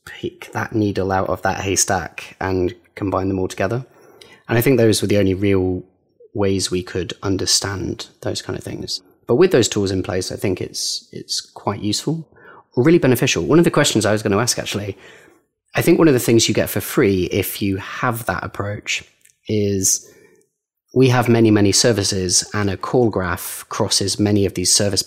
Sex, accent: male, British